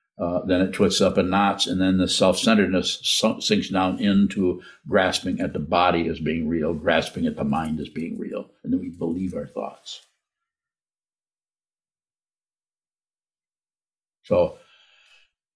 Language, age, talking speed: English, 60-79, 135 wpm